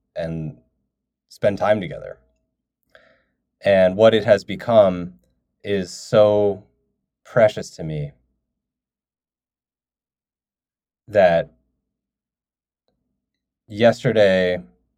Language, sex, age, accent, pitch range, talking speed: English, male, 20-39, American, 85-110 Hz, 65 wpm